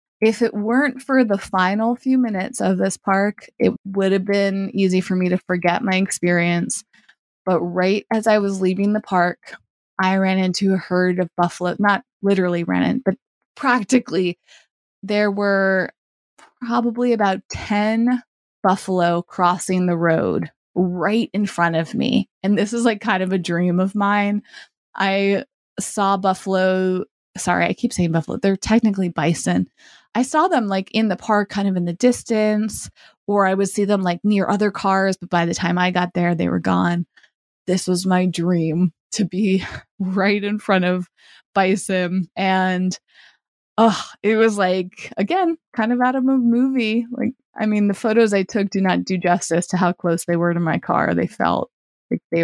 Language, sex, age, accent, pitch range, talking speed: English, female, 20-39, American, 180-215 Hz, 175 wpm